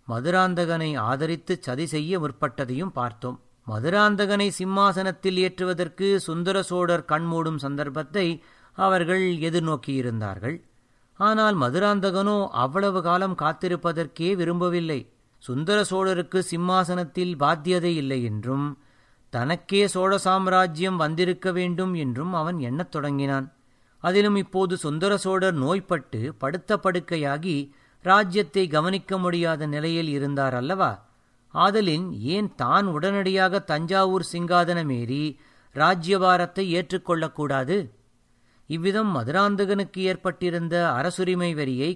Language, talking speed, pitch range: Tamil, 85 wpm, 145-190 Hz